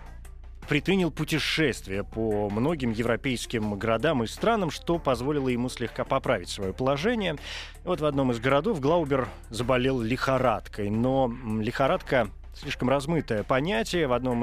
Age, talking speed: 20-39, 125 wpm